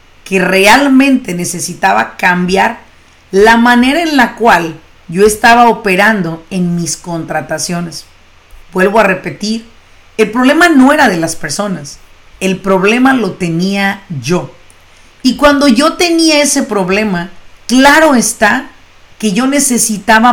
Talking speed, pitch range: 120 wpm, 180-245 Hz